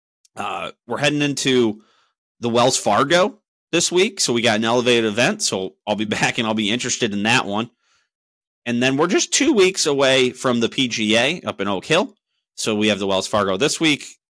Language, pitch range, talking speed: English, 110-160 Hz, 200 wpm